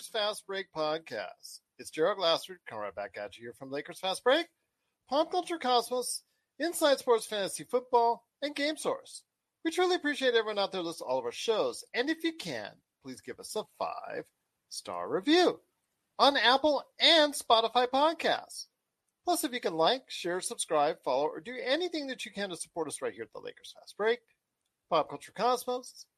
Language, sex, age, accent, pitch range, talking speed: English, male, 40-59, American, 195-315 Hz, 190 wpm